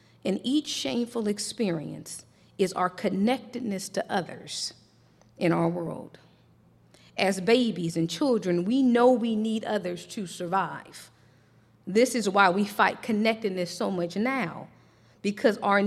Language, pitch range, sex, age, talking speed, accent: English, 170-235 Hz, female, 40-59, 130 wpm, American